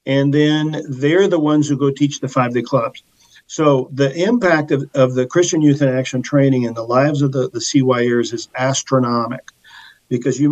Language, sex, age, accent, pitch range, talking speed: English, male, 50-69, American, 130-150 Hz, 190 wpm